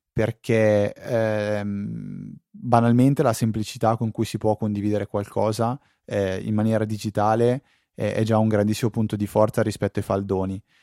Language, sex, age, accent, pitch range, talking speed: Italian, male, 20-39, native, 105-120 Hz, 145 wpm